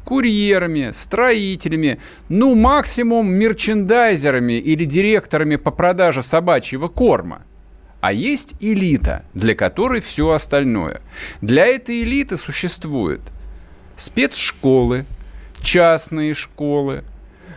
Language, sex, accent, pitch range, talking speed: Russian, male, native, 115-180 Hz, 85 wpm